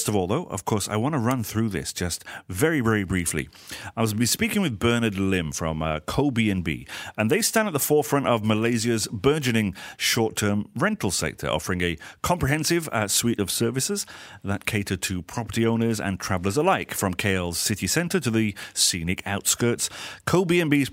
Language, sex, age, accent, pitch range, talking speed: English, male, 40-59, British, 95-125 Hz, 180 wpm